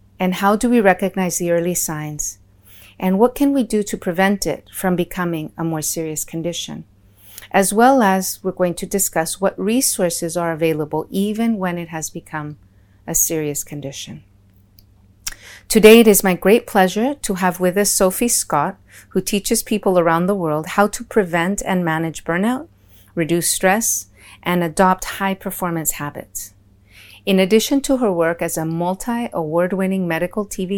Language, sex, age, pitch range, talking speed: English, female, 40-59, 155-195 Hz, 160 wpm